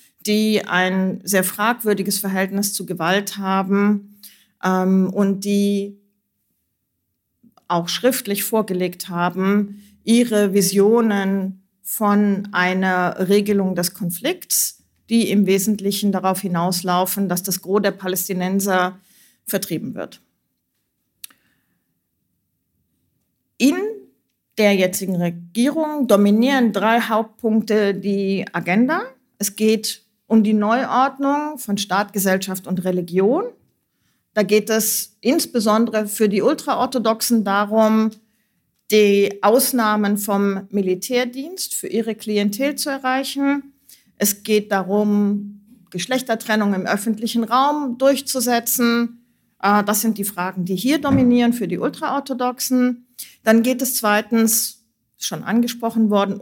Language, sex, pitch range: German, female, 195-235 Hz